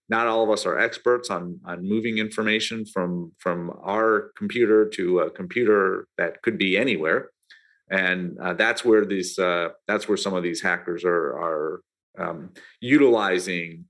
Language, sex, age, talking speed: English, male, 40-59, 160 wpm